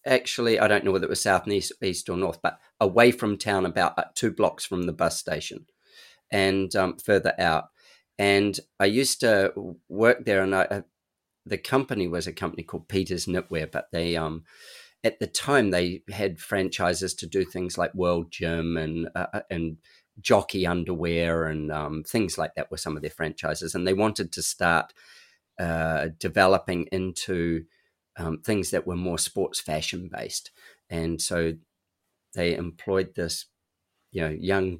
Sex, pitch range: male, 85-100 Hz